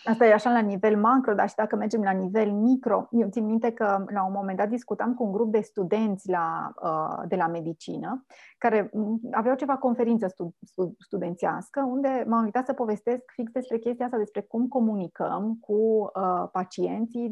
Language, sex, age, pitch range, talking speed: Romanian, female, 30-49, 190-235 Hz, 175 wpm